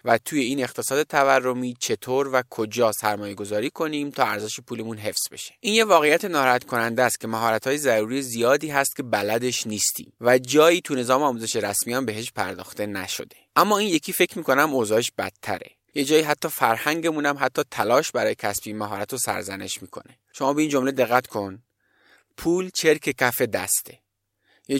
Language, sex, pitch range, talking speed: Persian, male, 110-145 Hz, 165 wpm